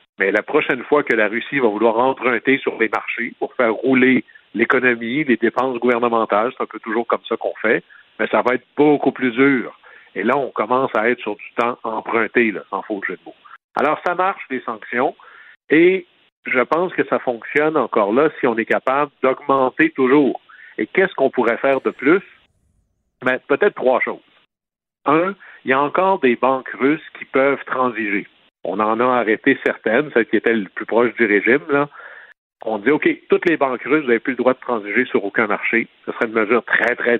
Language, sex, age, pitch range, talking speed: French, male, 60-79, 120-155 Hz, 205 wpm